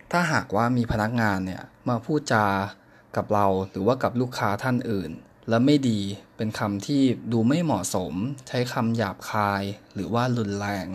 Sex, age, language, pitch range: male, 20-39, Thai, 105-130 Hz